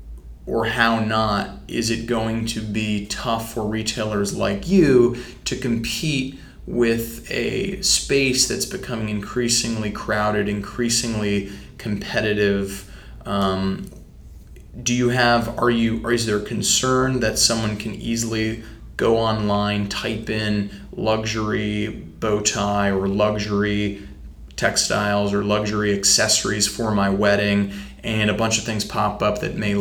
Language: English